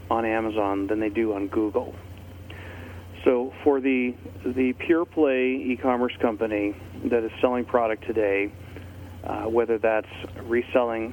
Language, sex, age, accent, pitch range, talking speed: English, male, 40-59, American, 95-120 Hz, 130 wpm